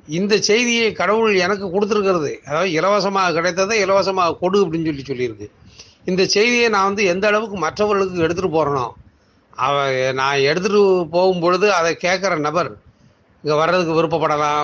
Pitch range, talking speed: 140-180 Hz, 135 wpm